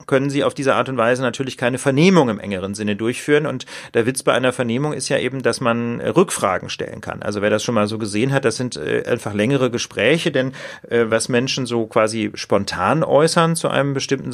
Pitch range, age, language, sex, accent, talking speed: 115-145 Hz, 40-59, German, male, German, 215 wpm